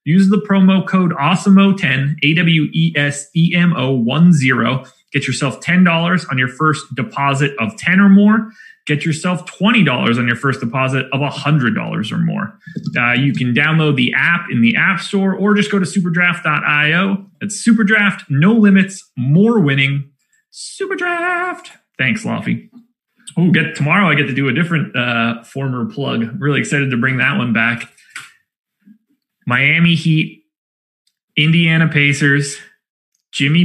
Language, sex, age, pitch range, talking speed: English, male, 30-49, 135-190 Hz, 150 wpm